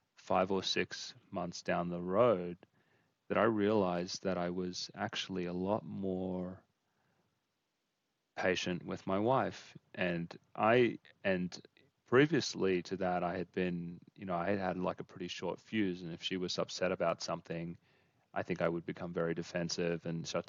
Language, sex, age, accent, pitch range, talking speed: English, male, 30-49, Australian, 85-95 Hz, 165 wpm